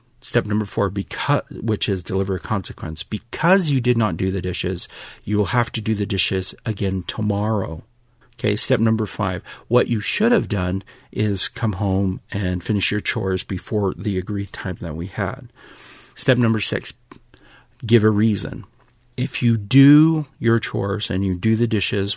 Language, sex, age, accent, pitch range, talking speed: English, male, 40-59, American, 100-115 Hz, 175 wpm